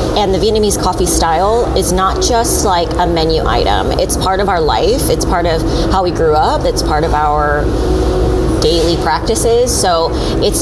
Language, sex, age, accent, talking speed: English, female, 30-49, American, 180 wpm